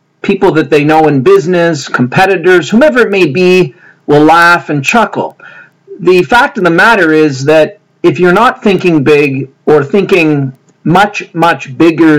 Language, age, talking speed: English, 40-59, 160 wpm